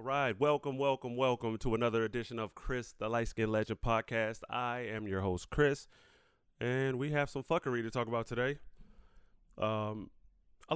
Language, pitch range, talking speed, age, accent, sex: English, 95-125 Hz, 175 wpm, 30-49, American, male